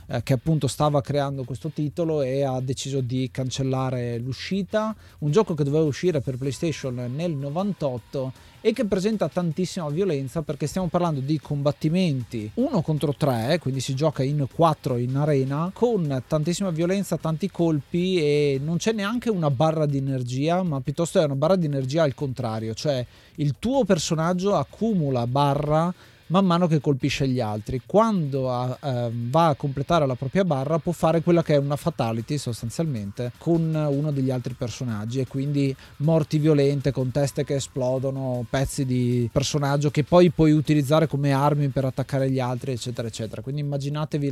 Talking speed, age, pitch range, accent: 160 wpm, 30-49, 130-165 Hz, native